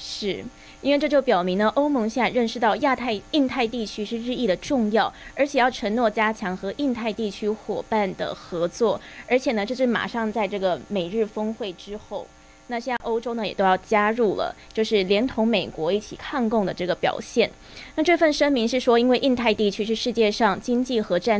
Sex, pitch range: female, 200-255 Hz